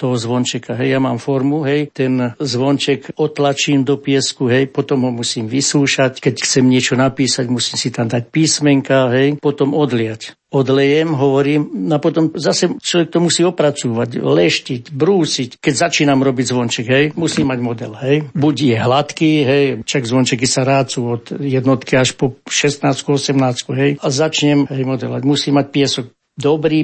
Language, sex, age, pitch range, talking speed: Slovak, male, 60-79, 130-145 Hz, 160 wpm